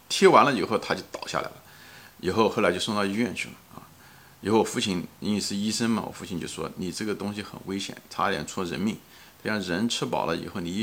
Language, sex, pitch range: Chinese, male, 90-115 Hz